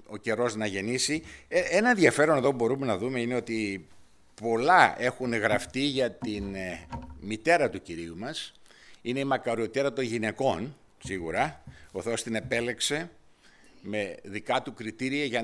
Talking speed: 145 wpm